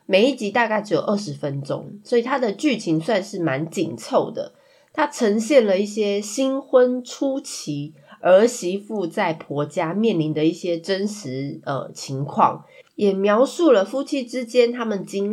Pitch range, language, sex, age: 165-240 Hz, Chinese, female, 20-39